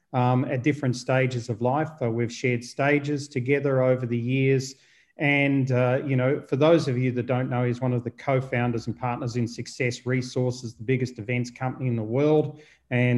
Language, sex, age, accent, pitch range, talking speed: English, male, 30-49, Australian, 125-145 Hz, 195 wpm